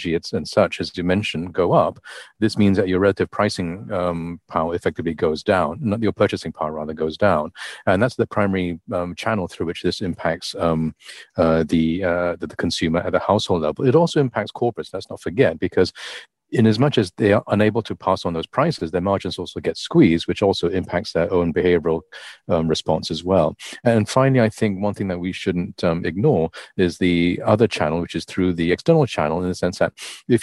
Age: 40-59